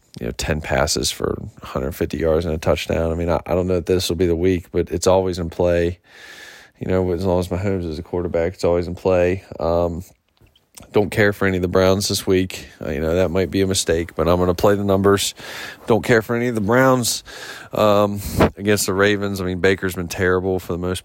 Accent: American